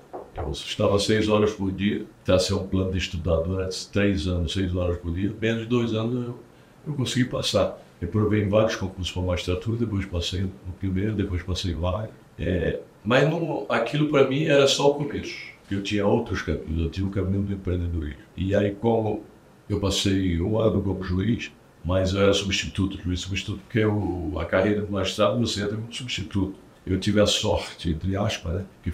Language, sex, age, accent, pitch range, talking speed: Portuguese, male, 60-79, Brazilian, 95-110 Hz, 200 wpm